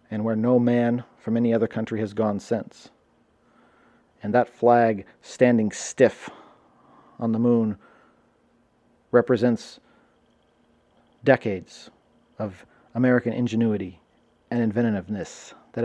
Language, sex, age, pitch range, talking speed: English, male, 40-59, 105-120 Hz, 100 wpm